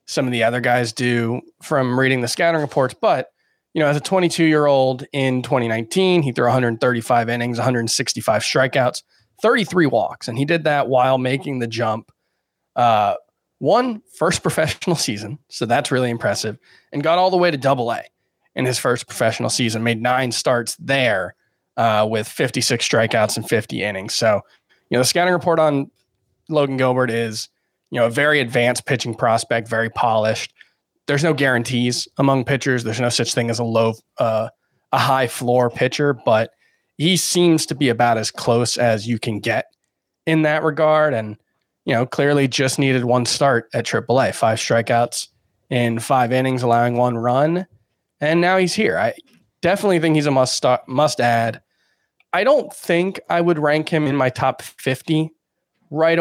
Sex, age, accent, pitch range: male, 20-39, American, 120-150 Hz